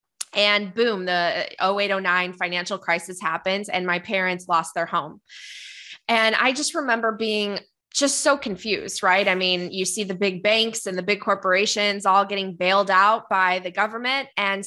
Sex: female